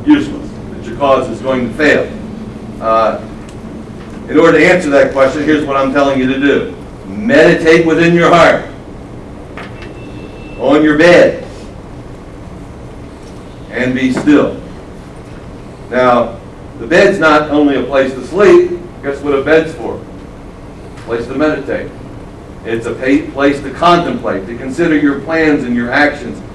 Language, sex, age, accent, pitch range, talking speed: English, male, 60-79, American, 120-155 Hz, 140 wpm